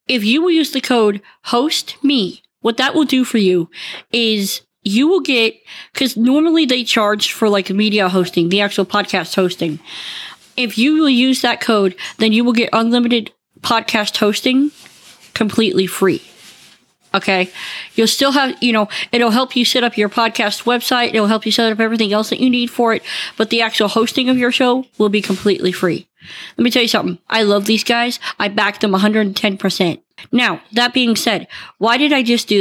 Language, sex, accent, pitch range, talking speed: English, female, American, 205-250 Hz, 190 wpm